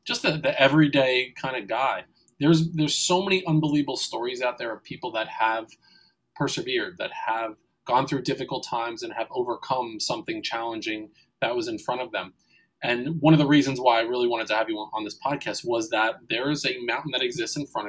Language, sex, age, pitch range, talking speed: English, male, 20-39, 125-210 Hz, 210 wpm